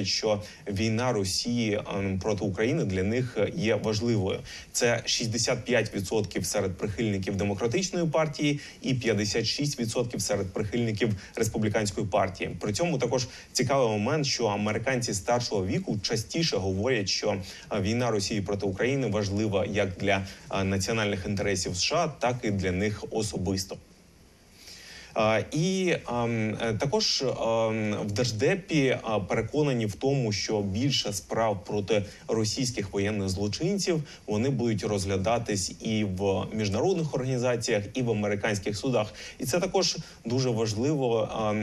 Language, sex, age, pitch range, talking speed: Ukrainian, male, 20-39, 100-125 Hz, 120 wpm